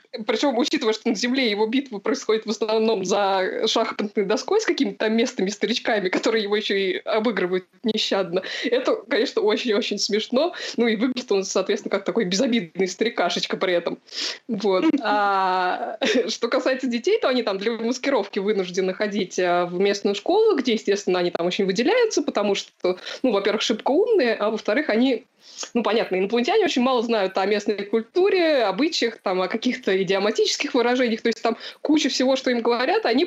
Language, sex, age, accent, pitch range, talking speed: Russian, female, 20-39, native, 200-255 Hz, 160 wpm